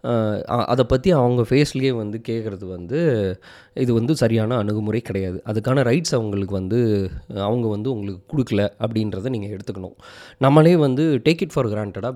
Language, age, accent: Tamil, 20-39, native